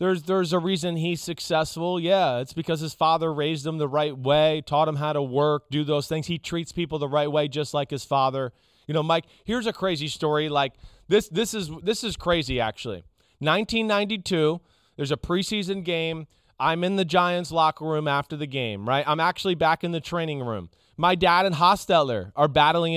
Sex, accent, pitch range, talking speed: male, American, 135-175 Hz, 200 wpm